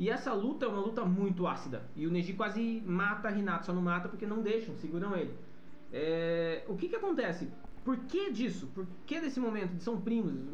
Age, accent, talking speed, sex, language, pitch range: 20-39, Brazilian, 215 wpm, male, Portuguese, 165-225 Hz